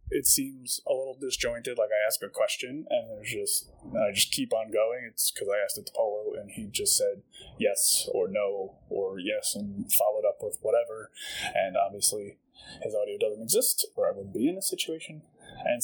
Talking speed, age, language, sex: 205 wpm, 20-39, English, male